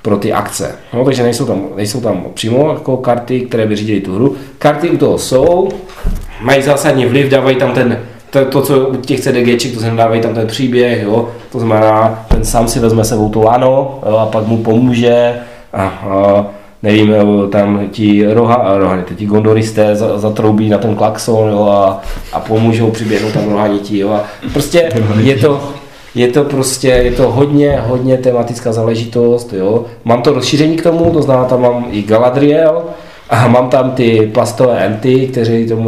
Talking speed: 175 wpm